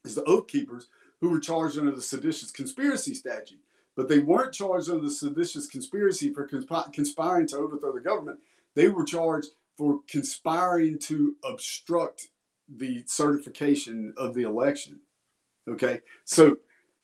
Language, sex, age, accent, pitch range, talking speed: English, male, 50-69, American, 130-175 Hz, 140 wpm